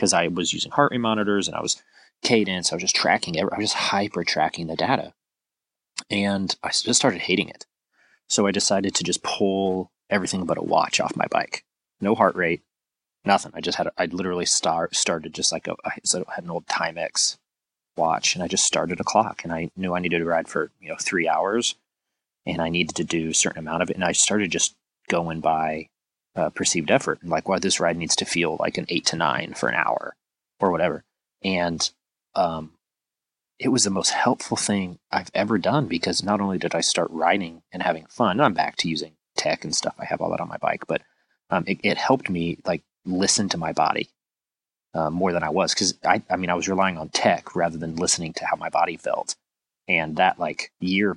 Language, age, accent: English, 30-49, American